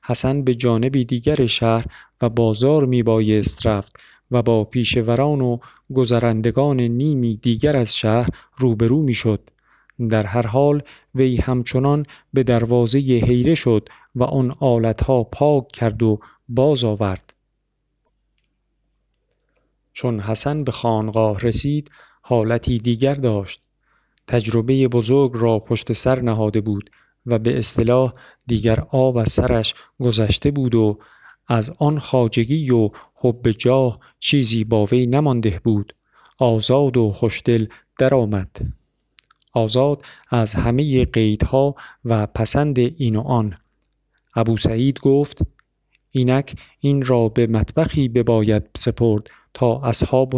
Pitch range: 110-130 Hz